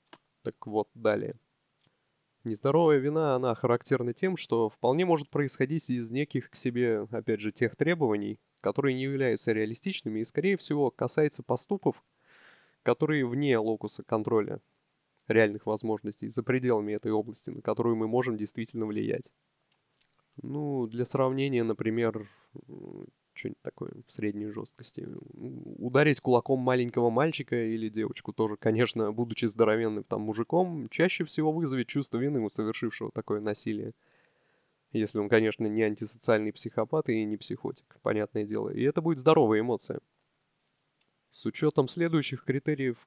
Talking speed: 130 wpm